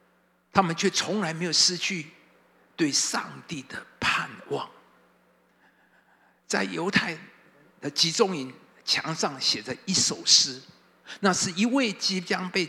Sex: male